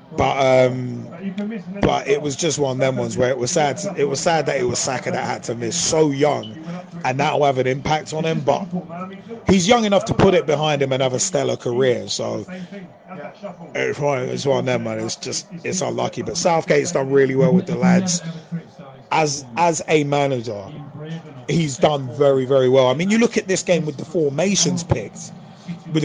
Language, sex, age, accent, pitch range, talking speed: English, male, 30-49, British, 145-190 Hz, 205 wpm